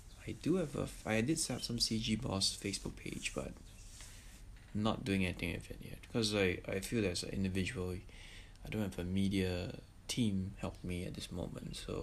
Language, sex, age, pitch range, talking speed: English, male, 20-39, 95-110 Hz, 200 wpm